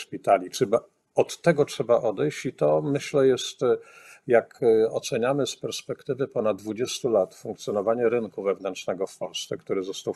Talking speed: 135 wpm